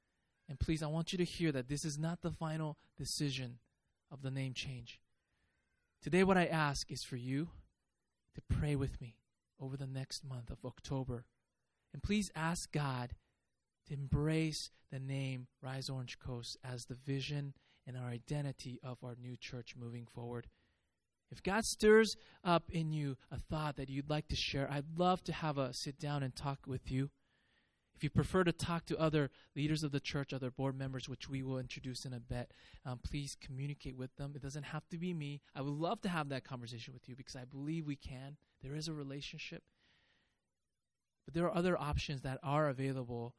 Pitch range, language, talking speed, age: 125-150 Hz, English, 195 wpm, 20-39